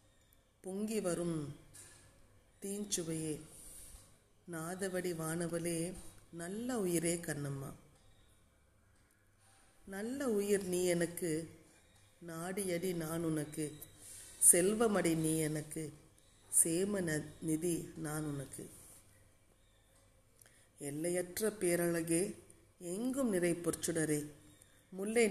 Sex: female